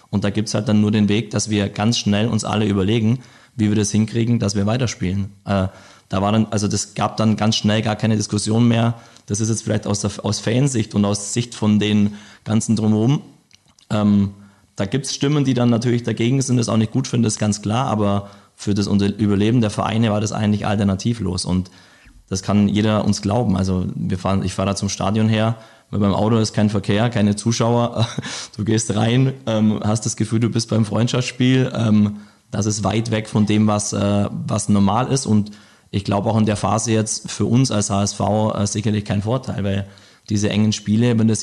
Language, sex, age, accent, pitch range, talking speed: German, male, 20-39, German, 100-115 Hz, 210 wpm